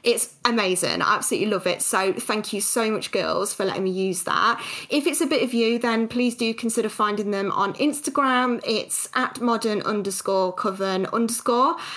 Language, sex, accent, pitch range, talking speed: English, female, British, 210-255 Hz, 185 wpm